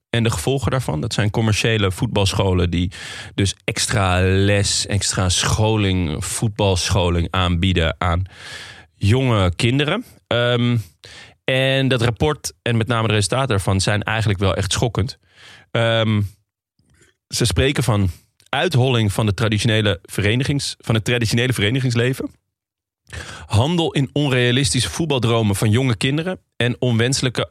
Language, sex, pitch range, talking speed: Dutch, male, 95-120 Hz, 120 wpm